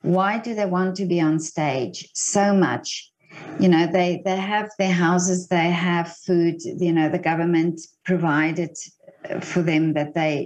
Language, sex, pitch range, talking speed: English, female, 170-200 Hz, 165 wpm